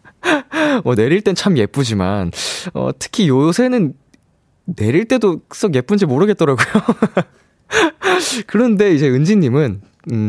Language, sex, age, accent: Korean, male, 20-39, native